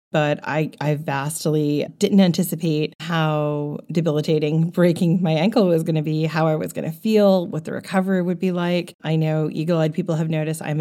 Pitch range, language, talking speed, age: 155-200 Hz, English, 190 wpm, 30-49